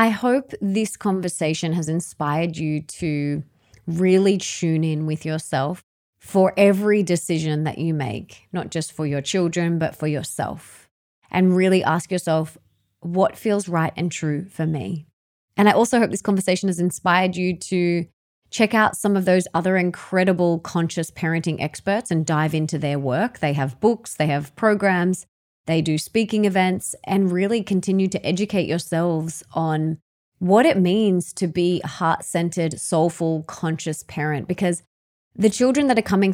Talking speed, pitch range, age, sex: 160 wpm, 160-195 Hz, 20-39, female